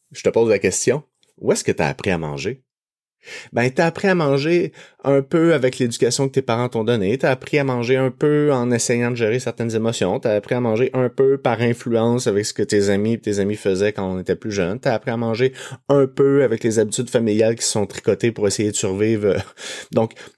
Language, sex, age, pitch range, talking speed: French, male, 30-49, 105-140 Hz, 235 wpm